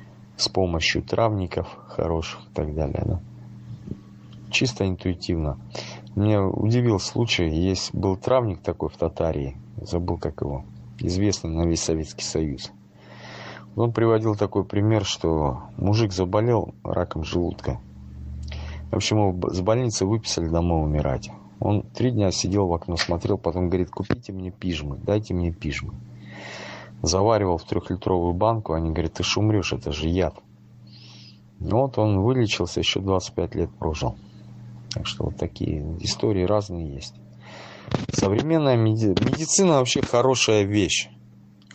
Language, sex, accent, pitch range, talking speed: Russian, male, native, 80-110 Hz, 130 wpm